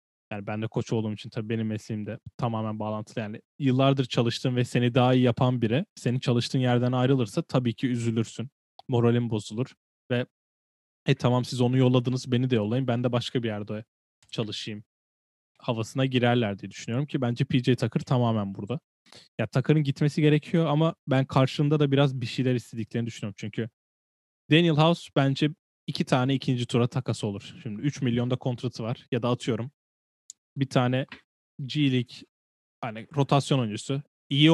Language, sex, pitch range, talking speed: Turkish, male, 110-135 Hz, 160 wpm